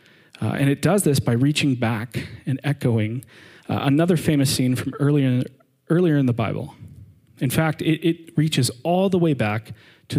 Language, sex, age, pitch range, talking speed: English, male, 40-59, 115-145 Hz, 175 wpm